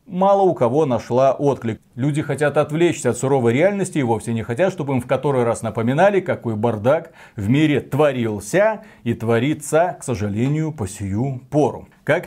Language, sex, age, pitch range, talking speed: Russian, male, 30-49, 125-175 Hz, 165 wpm